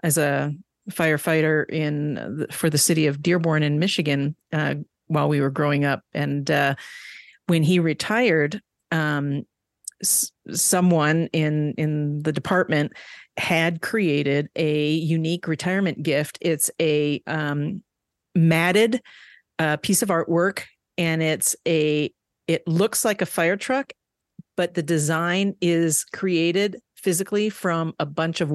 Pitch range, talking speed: 145-170 Hz, 130 wpm